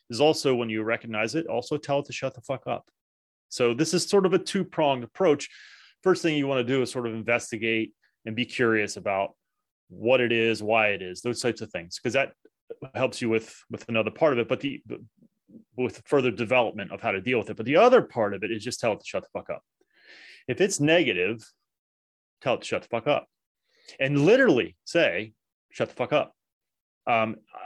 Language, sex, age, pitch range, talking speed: English, male, 30-49, 110-135 Hz, 215 wpm